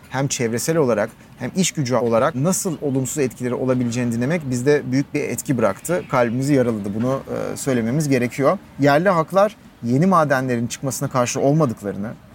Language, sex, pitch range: Turkish, male, 125-160 Hz